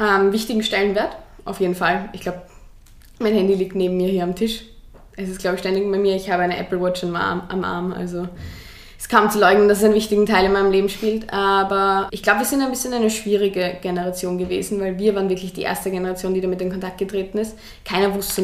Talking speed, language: 225 wpm, German